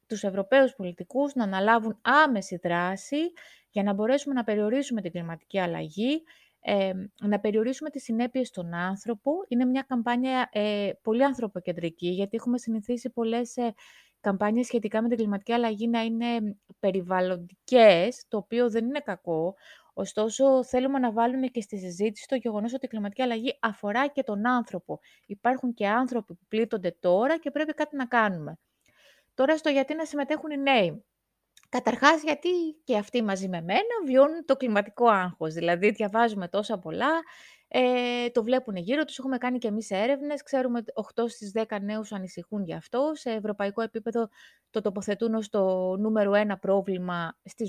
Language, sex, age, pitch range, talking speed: Greek, female, 20-39, 200-265 Hz, 160 wpm